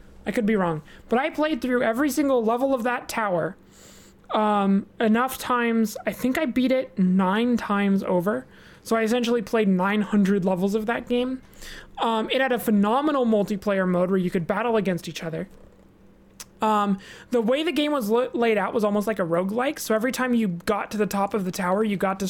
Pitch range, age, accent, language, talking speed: 195-240 Hz, 20-39, American, English, 200 wpm